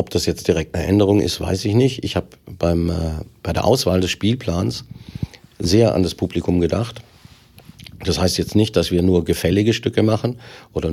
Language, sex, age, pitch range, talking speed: German, male, 50-69, 85-100 Hz, 180 wpm